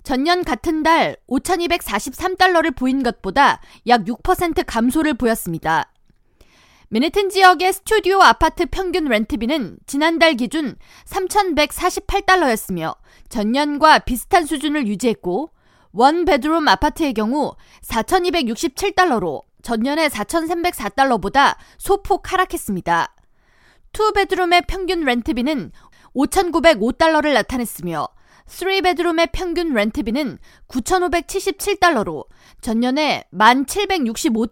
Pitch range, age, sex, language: 245-360 Hz, 20-39, female, Korean